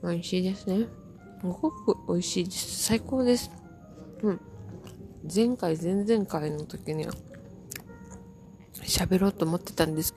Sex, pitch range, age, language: female, 160-220 Hz, 20-39, Japanese